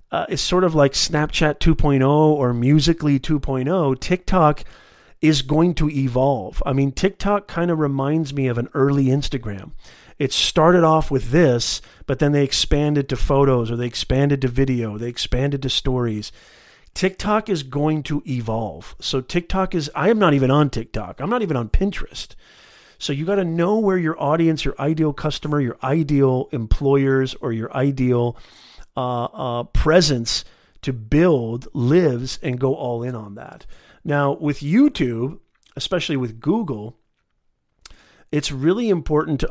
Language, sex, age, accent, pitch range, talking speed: English, male, 40-59, American, 120-155 Hz, 160 wpm